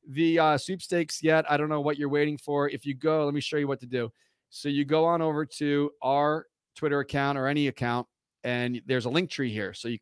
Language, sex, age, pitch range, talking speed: English, male, 30-49, 120-145 Hz, 245 wpm